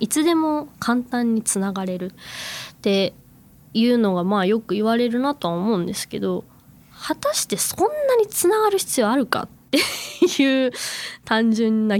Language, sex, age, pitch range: Japanese, female, 20-39, 195-275 Hz